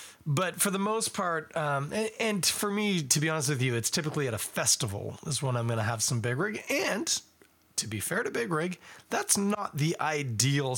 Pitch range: 115-170 Hz